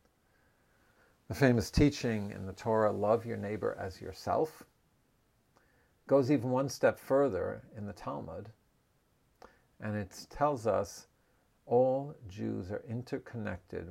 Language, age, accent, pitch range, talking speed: English, 50-69, American, 95-120 Hz, 115 wpm